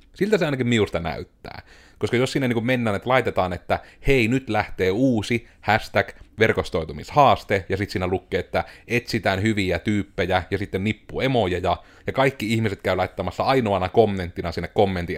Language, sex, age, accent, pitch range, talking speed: Finnish, male, 30-49, native, 90-110 Hz, 160 wpm